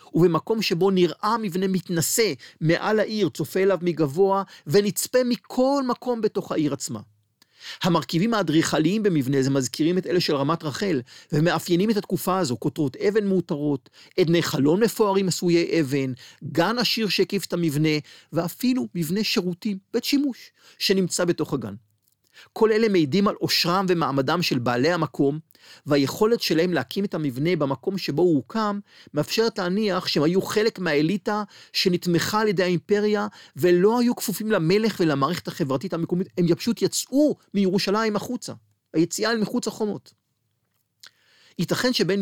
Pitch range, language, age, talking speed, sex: 150-200 Hz, Hebrew, 40-59, 140 wpm, male